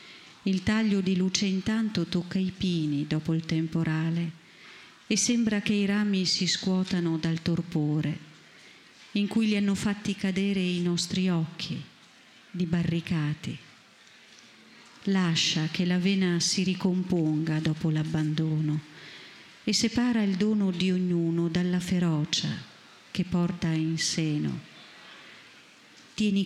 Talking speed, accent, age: 120 wpm, native, 40-59